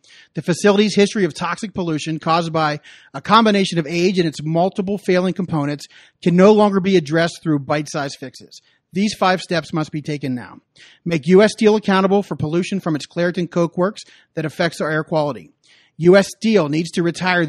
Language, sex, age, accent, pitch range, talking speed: English, male, 40-59, American, 155-195 Hz, 180 wpm